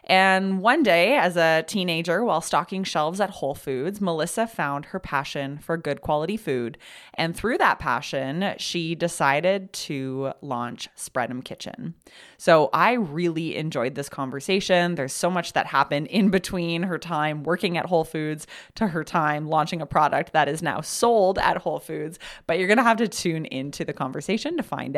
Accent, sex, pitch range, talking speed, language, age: American, female, 145-195 Hz, 180 wpm, English, 20-39